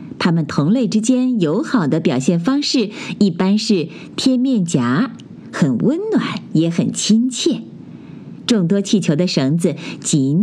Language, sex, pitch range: Chinese, female, 170-250 Hz